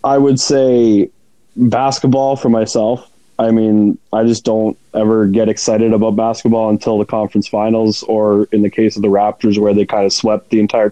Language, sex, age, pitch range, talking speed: English, male, 20-39, 105-120 Hz, 185 wpm